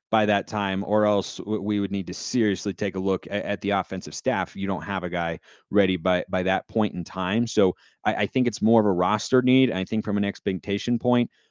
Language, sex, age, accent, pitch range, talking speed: English, male, 30-49, American, 90-120 Hz, 235 wpm